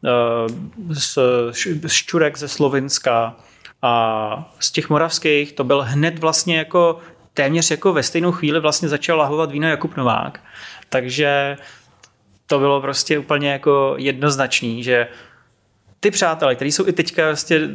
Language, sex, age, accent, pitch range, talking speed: Czech, male, 30-49, native, 125-155 Hz, 135 wpm